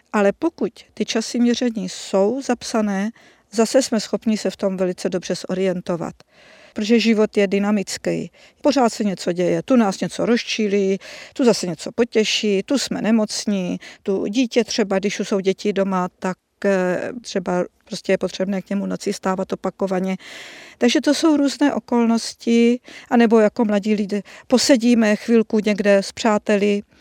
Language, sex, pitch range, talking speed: Czech, female, 200-250 Hz, 150 wpm